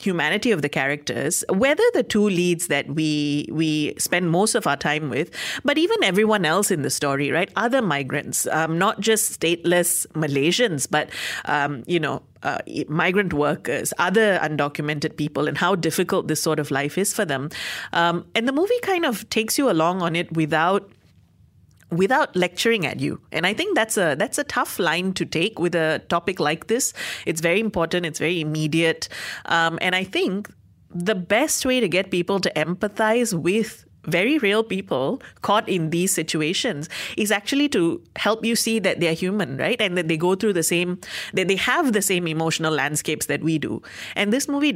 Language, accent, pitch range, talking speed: English, Indian, 155-205 Hz, 190 wpm